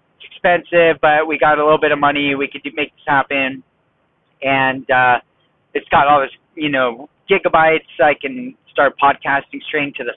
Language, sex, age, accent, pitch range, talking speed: English, male, 30-49, American, 145-180 Hz, 185 wpm